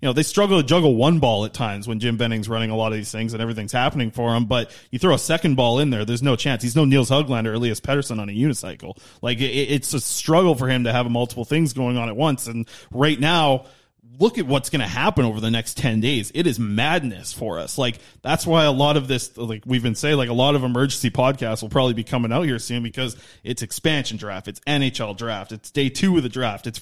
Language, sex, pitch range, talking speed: English, male, 120-150 Hz, 260 wpm